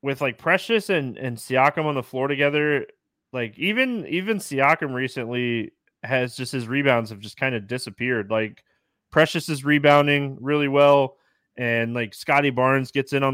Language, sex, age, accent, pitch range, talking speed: English, male, 20-39, American, 115-150 Hz, 165 wpm